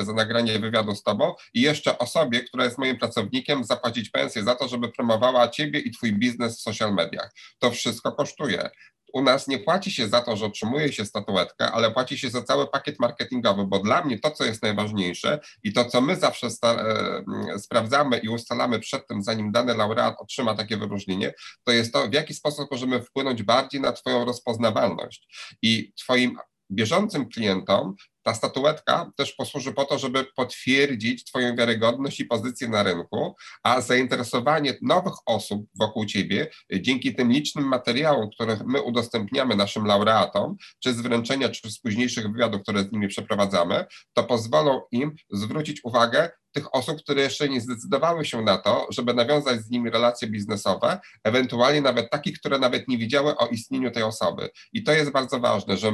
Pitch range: 110-135 Hz